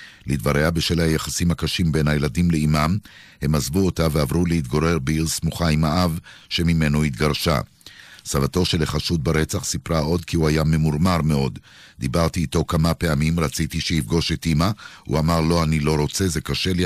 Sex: male